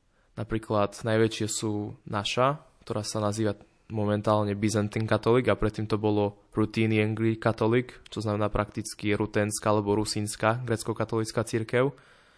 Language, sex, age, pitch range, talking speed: Slovak, male, 20-39, 105-120 Hz, 120 wpm